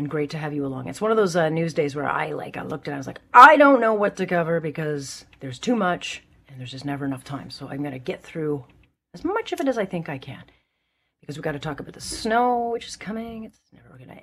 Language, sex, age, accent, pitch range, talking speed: English, female, 40-59, American, 145-220 Hz, 285 wpm